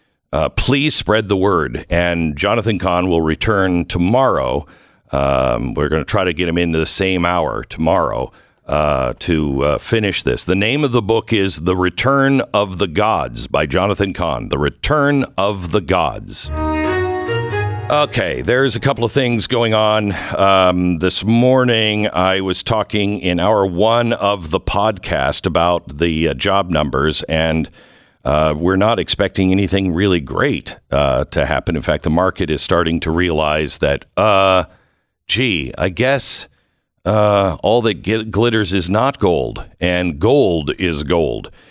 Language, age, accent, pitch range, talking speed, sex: English, 60-79, American, 85-105 Hz, 155 wpm, male